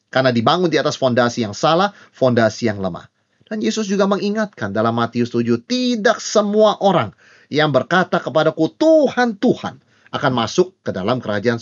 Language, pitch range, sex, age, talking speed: Indonesian, 115-165 Hz, male, 30-49, 155 wpm